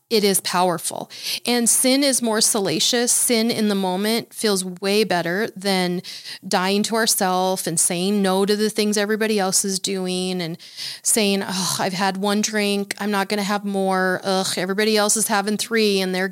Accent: American